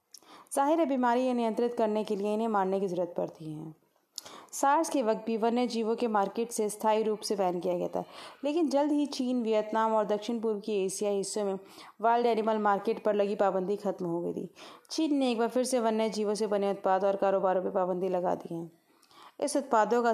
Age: 30-49